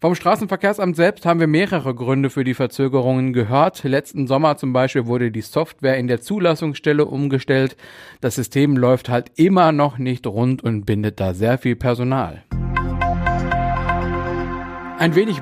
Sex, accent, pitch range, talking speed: male, German, 120-160 Hz, 150 wpm